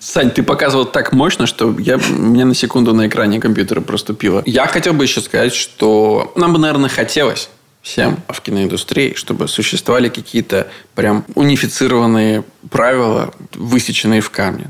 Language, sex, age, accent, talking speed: Russian, male, 20-39, native, 145 wpm